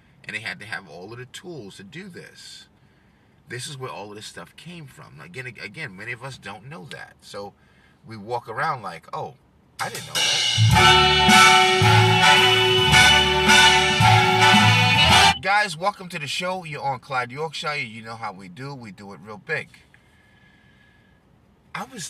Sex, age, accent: male, 30-49, American